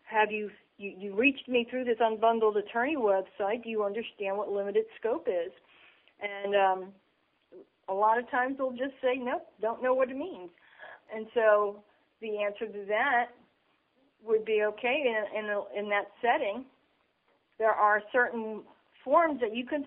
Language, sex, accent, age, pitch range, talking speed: English, female, American, 40-59, 205-245 Hz, 165 wpm